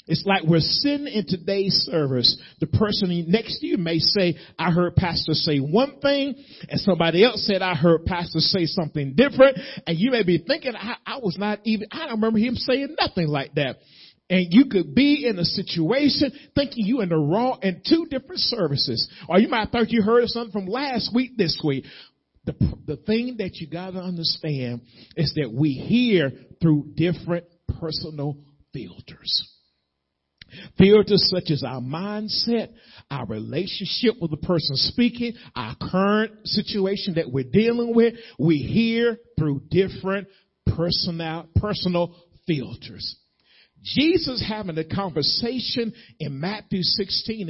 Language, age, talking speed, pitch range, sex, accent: English, 40-59, 155 wpm, 155-220 Hz, male, American